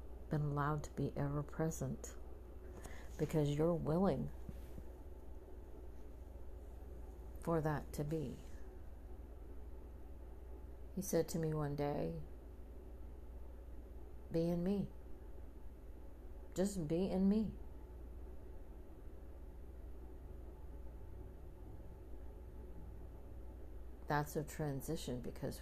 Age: 60-79